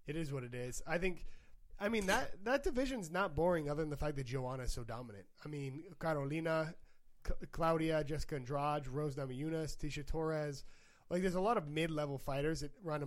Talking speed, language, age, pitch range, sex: 195 wpm, English, 20-39, 135-165 Hz, male